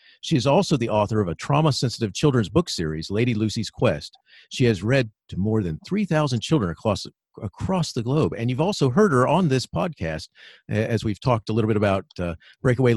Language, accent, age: English, American, 50-69